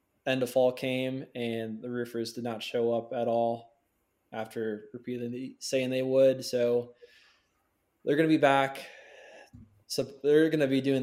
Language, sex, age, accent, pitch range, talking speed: English, male, 20-39, American, 115-130 Hz, 170 wpm